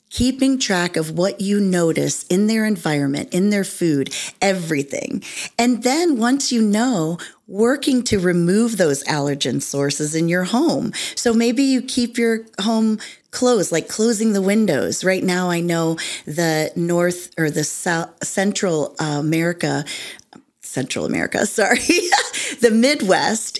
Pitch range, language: 160-220 Hz, English